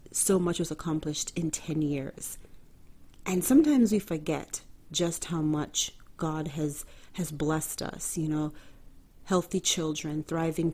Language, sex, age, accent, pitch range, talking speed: English, female, 30-49, American, 150-170 Hz, 135 wpm